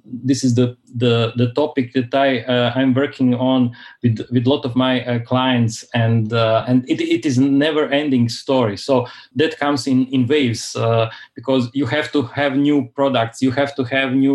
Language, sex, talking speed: English, male, 200 wpm